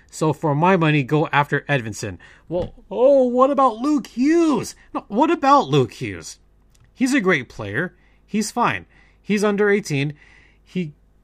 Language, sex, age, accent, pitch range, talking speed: English, male, 30-49, American, 110-170 Hz, 150 wpm